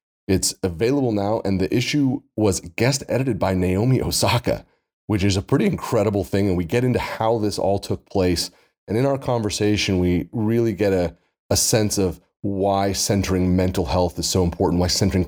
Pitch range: 90-100 Hz